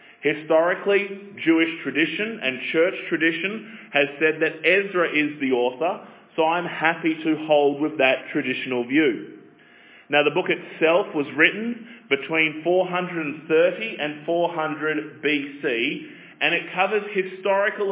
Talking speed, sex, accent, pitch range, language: 125 wpm, male, Australian, 150-190 Hz, English